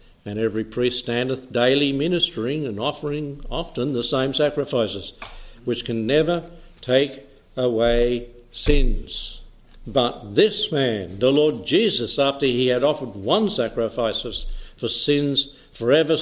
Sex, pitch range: male, 115-145 Hz